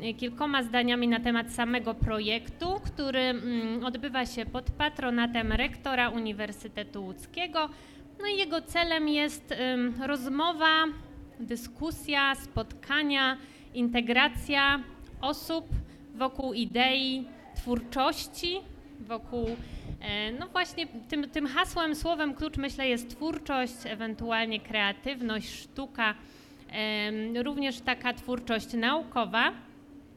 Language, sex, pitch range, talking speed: Polish, female, 235-280 Hz, 90 wpm